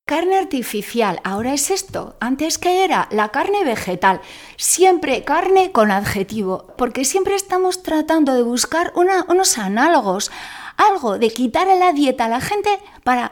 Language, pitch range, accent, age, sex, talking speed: Spanish, 225-335 Hz, Spanish, 30-49, female, 155 wpm